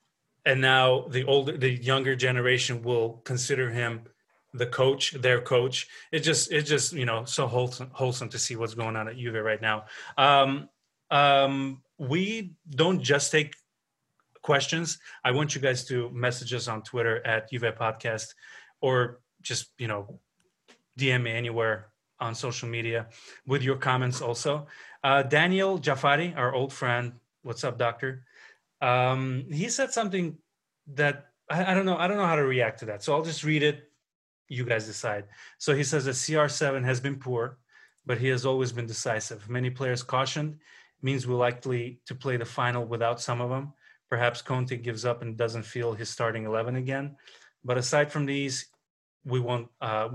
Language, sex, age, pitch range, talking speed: English, male, 30-49, 120-140 Hz, 175 wpm